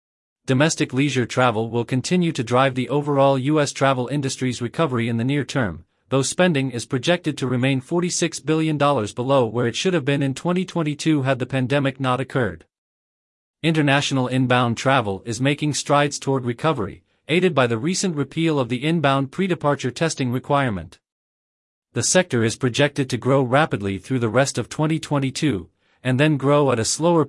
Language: English